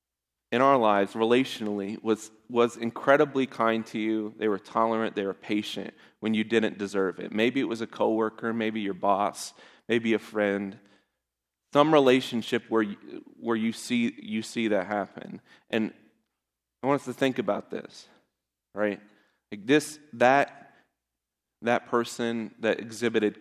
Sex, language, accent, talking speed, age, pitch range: male, English, American, 150 wpm, 30-49, 100-115 Hz